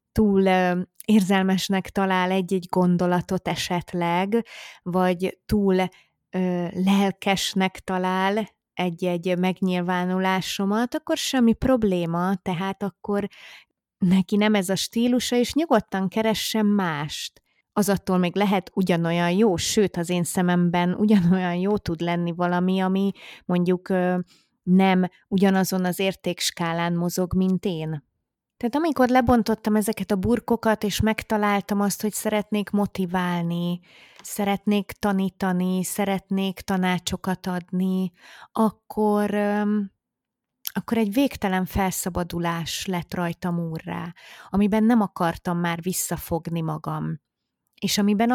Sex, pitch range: female, 180-205 Hz